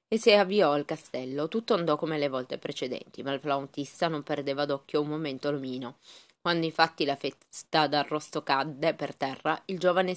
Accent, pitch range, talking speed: native, 150-185 Hz, 175 wpm